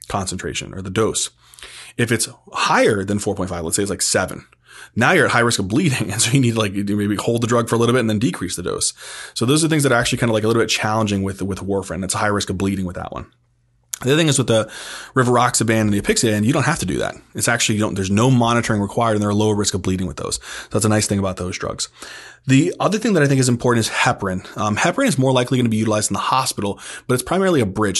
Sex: male